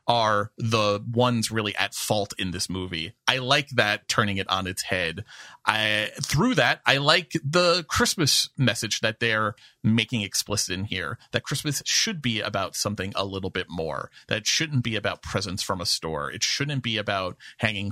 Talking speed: 180 wpm